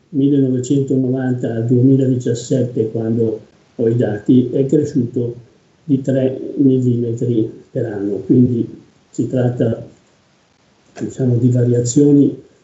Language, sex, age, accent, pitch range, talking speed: Italian, male, 50-69, native, 125-140 Hz, 85 wpm